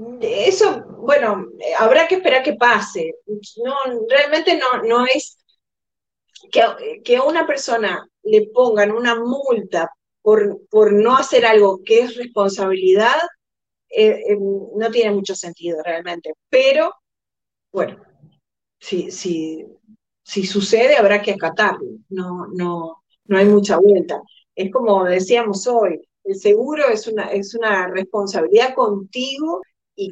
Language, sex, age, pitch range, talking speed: Spanish, female, 30-49, 195-280 Hz, 125 wpm